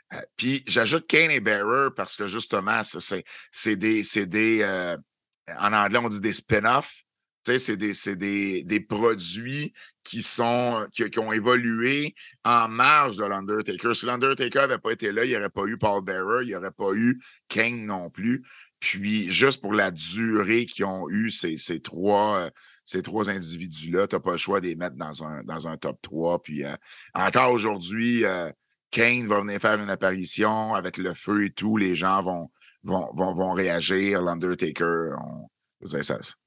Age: 50-69